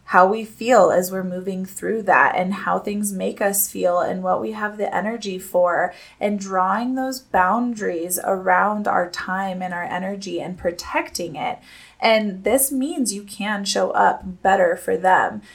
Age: 20-39